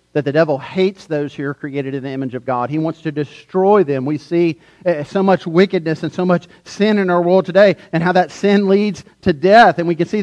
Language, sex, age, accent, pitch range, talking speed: English, male, 40-59, American, 140-200 Hz, 245 wpm